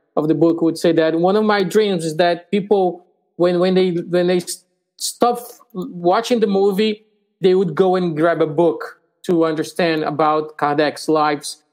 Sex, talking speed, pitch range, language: male, 175 wpm, 155-185 Hz, English